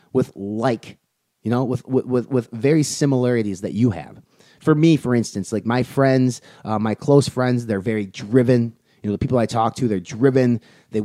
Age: 30-49